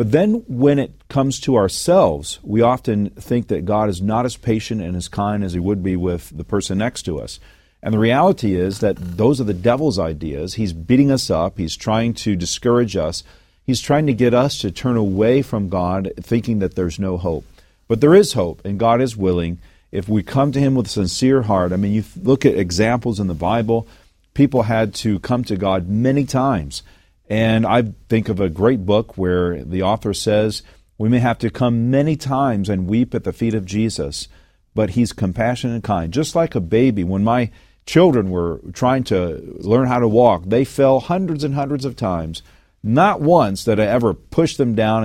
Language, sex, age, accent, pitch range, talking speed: English, male, 40-59, American, 95-125 Hz, 210 wpm